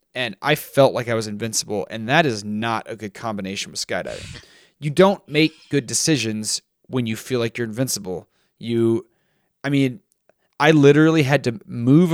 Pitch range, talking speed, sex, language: 115-140 Hz, 175 wpm, male, English